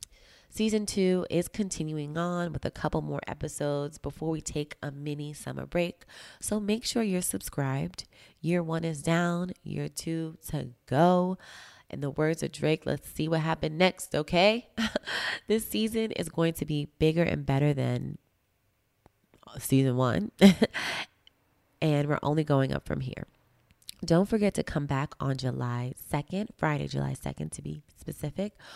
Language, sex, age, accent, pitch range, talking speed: English, female, 20-39, American, 135-180 Hz, 155 wpm